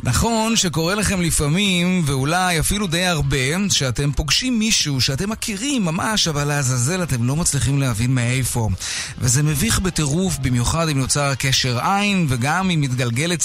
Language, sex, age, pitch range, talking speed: Hebrew, male, 30-49, 130-180 Hz, 145 wpm